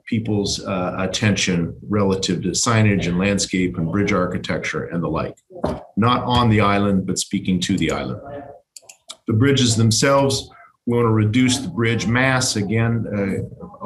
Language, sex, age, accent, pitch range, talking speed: English, male, 50-69, American, 95-115 Hz, 150 wpm